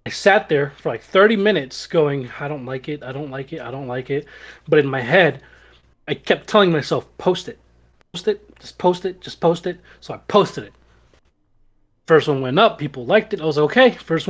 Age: 20-39